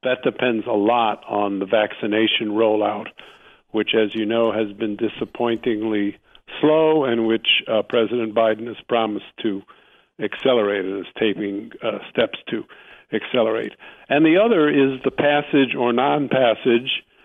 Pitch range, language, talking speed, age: 115-135 Hz, English, 140 wpm, 50-69